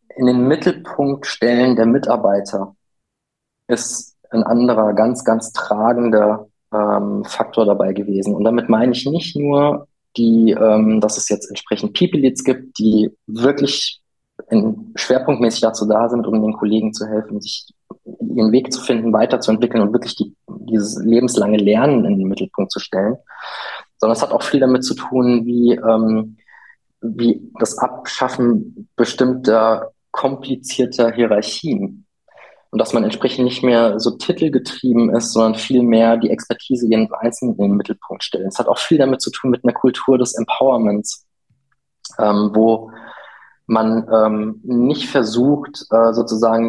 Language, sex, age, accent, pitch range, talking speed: German, male, 20-39, German, 110-130 Hz, 150 wpm